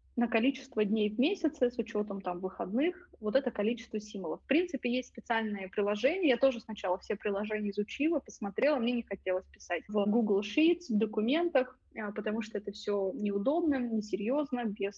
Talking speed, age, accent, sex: 165 wpm, 20-39, native, female